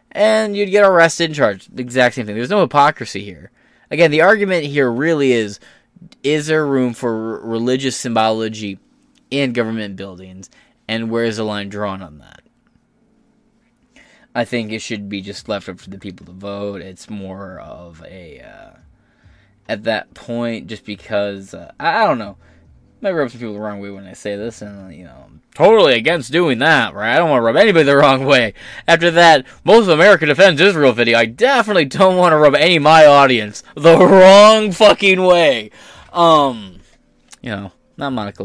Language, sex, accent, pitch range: English, male, American, 100-150 Hz